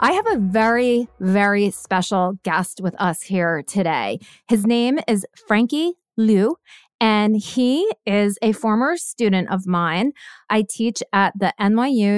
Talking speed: 145 wpm